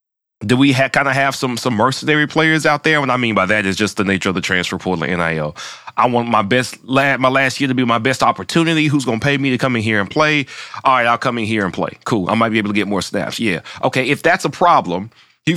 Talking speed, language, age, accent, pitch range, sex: 290 wpm, English, 30-49, American, 105-150 Hz, male